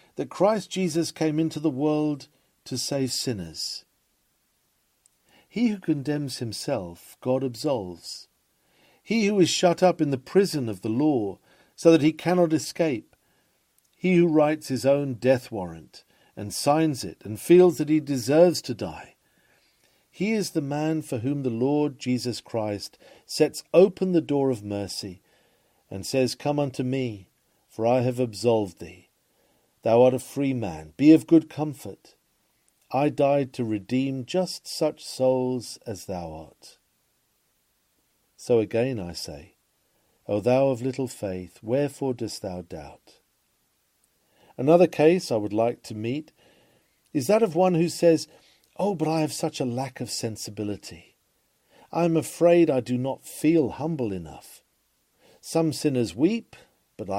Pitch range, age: 115-160 Hz, 50-69